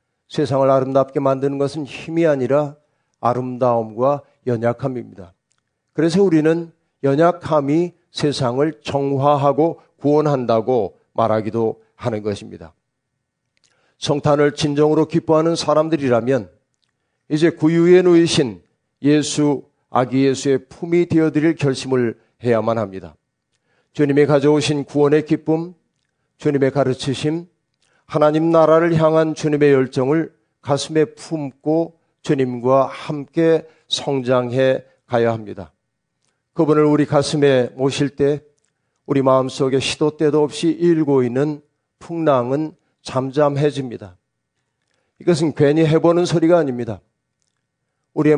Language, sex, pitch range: Korean, male, 130-155 Hz